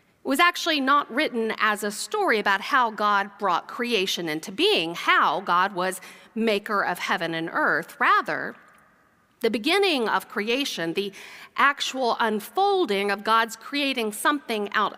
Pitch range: 200-280 Hz